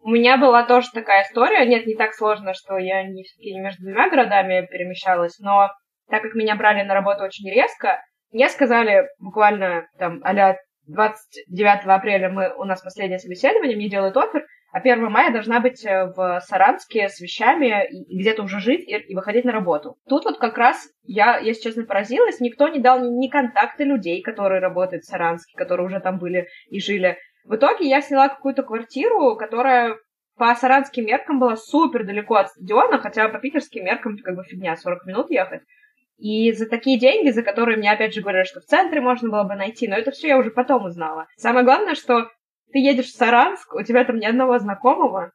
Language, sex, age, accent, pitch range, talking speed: Russian, female, 20-39, native, 195-255 Hz, 190 wpm